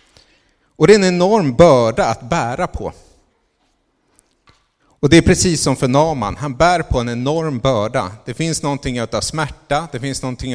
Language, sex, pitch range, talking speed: Swedish, male, 125-165 Hz, 170 wpm